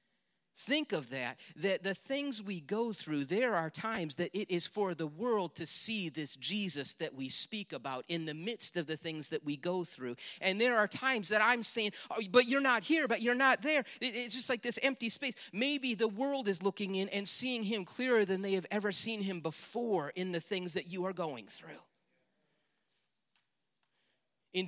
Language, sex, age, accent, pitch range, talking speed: English, male, 40-59, American, 170-225 Hz, 200 wpm